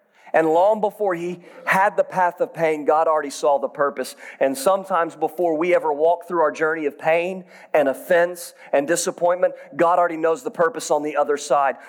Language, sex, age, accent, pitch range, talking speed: English, male, 40-59, American, 160-235 Hz, 190 wpm